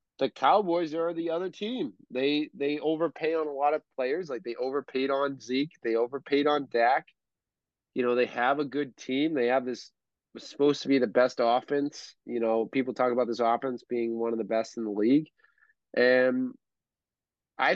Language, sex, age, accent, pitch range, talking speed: English, male, 20-39, American, 125-145 Hz, 190 wpm